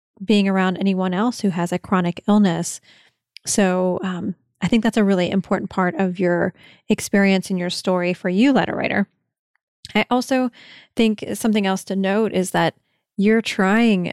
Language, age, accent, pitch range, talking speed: English, 30-49, American, 180-210 Hz, 165 wpm